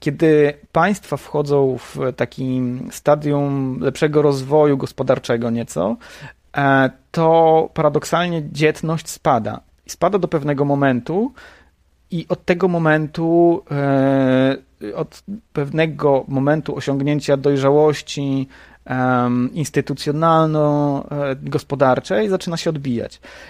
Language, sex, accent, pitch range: Polish, male, native, 125-160 Hz